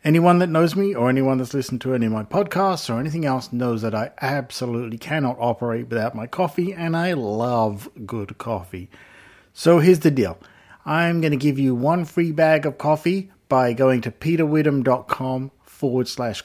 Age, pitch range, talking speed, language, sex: 50-69, 120-150 Hz, 180 wpm, English, male